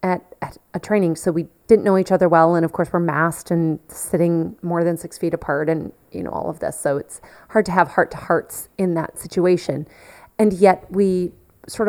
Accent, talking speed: American, 215 wpm